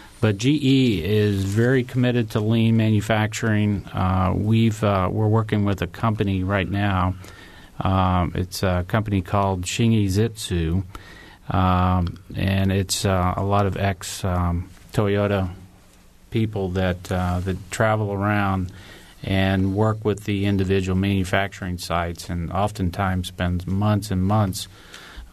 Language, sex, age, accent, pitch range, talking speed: English, male, 40-59, American, 95-110 Hz, 130 wpm